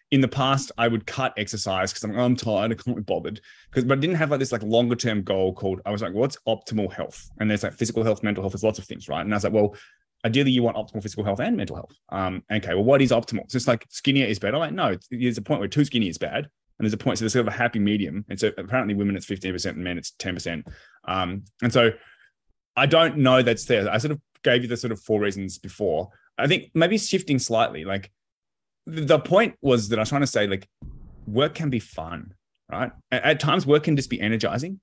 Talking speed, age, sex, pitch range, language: 255 wpm, 20-39, male, 105-135 Hz, English